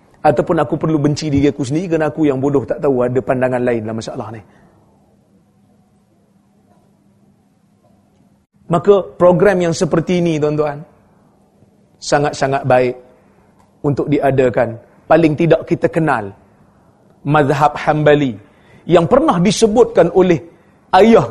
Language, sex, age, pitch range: Malay, male, 40-59, 150-225 Hz